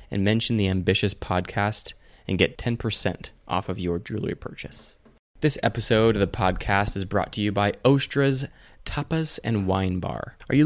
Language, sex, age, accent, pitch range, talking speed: English, male, 20-39, American, 95-125 Hz, 170 wpm